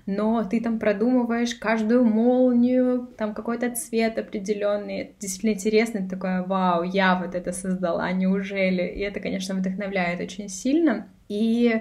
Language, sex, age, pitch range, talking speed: Russian, female, 20-39, 190-220 Hz, 130 wpm